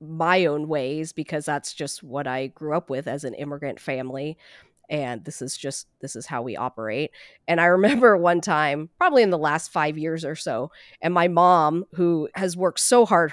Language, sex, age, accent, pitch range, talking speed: English, female, 30-49, American, 145-175 Hz, 205 wpm